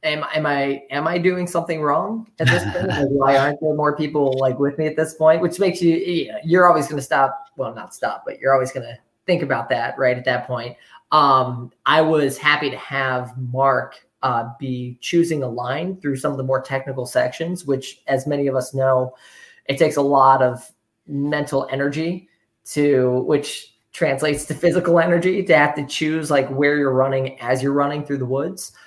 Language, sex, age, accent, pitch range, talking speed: English, male, 20-39, American, 130-155 Hz, 200 wpm